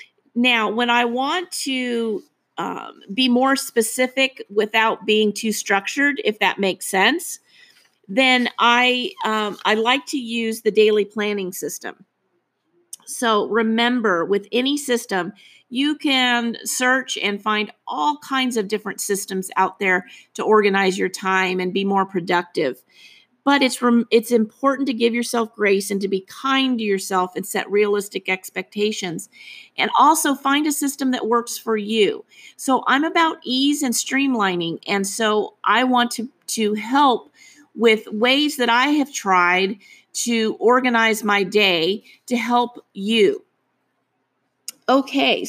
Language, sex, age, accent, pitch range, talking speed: English, female, 40-59, American, 205-265 Hz, 140 wpm